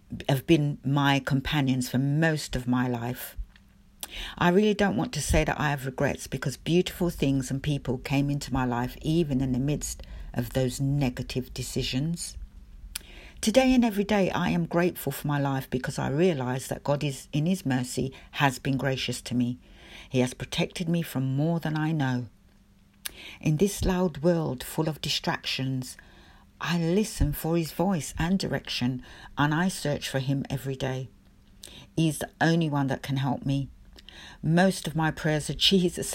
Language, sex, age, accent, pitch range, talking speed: English, female, 60-79, British, 130-175 Hz, 170 wpm